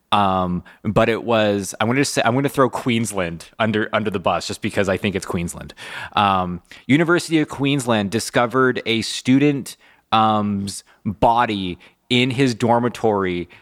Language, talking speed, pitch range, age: English, 155 wpm, 105-120 Hz, 20-39